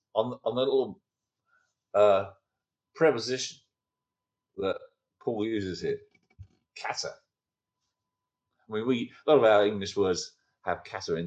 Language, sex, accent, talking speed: English, male, British, 120 wpm